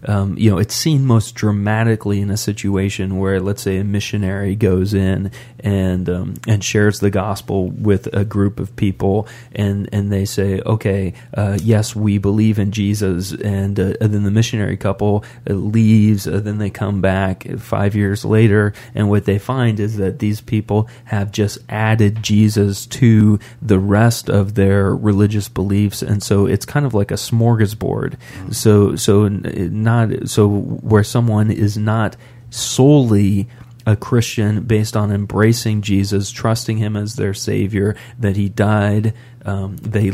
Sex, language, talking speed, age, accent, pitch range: male, English, 160 wpm, 30-49, American, 100-115 Hz